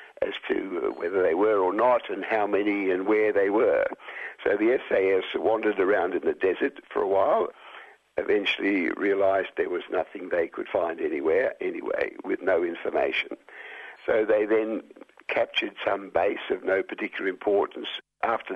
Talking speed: 160 wpm